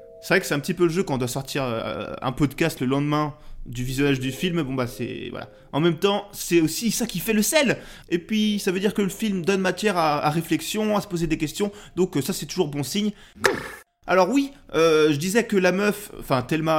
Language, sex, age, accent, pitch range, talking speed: French, male, 20-39, French, 145-190 Hz, 245 wpm